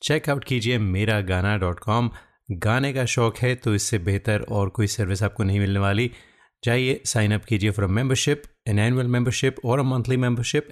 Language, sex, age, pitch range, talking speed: Hindi, male, 30-49, 100-125 Hz, 185 wpm